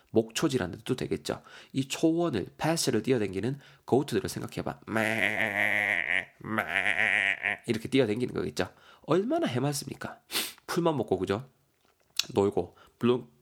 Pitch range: 105-135 Hz